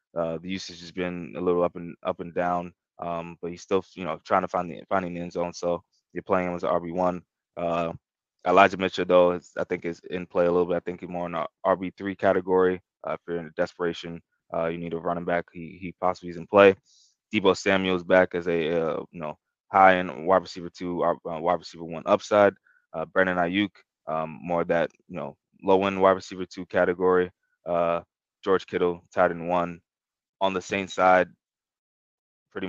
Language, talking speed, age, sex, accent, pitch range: English, 215 wpm, 20-39, male, American, 85-90 Hz